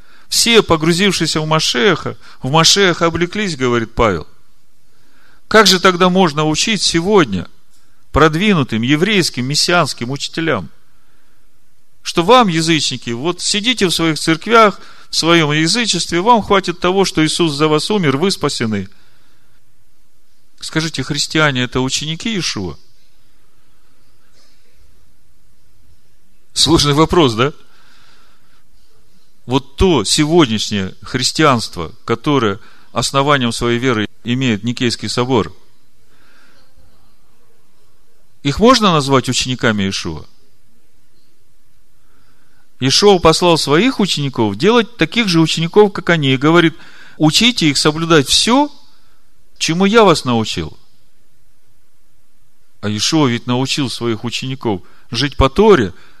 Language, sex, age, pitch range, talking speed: Russian, male, 40-59, 120-170 Hz, 100 wpm